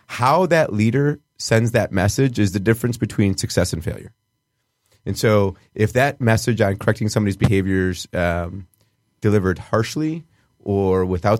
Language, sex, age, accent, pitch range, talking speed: English, male, 30-49, American, 90-110 Hz, 140 wpm